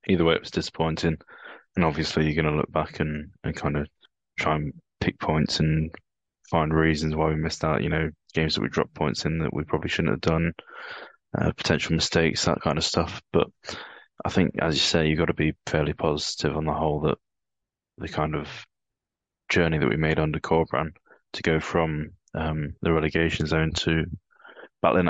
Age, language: 20-39, English